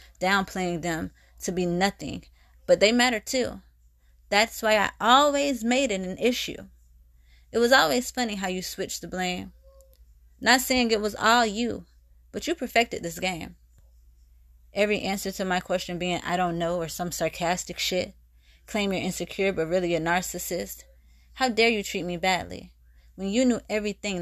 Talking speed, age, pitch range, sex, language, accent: 165 wpm, 20-39, 170-205 Hz, female, English, American